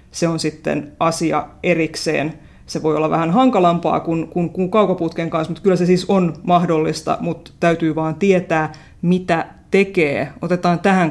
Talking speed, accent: 155 wpm, native